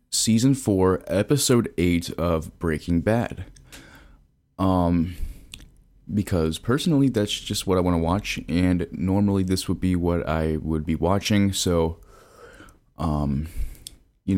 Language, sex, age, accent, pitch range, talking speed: English, male, 20-39, American, 85-105 Hz, 125 wpm